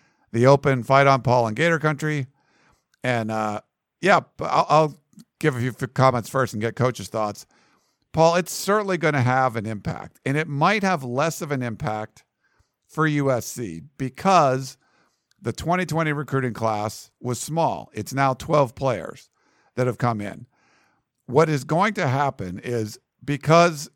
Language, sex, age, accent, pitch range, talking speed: English, male, 50-69, American, 120-155 Hz, 155 wpm